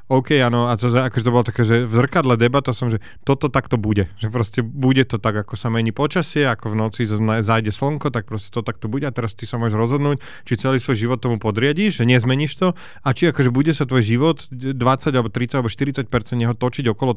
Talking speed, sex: 230 wpm, male